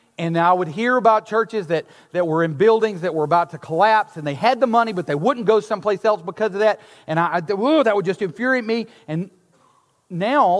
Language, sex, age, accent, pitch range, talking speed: English, male, 40-59, American, 165-235 Hz, 225 wpm